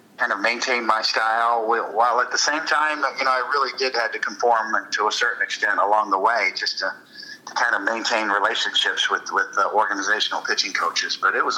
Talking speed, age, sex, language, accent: 215 wpm, 50-69, male, English, American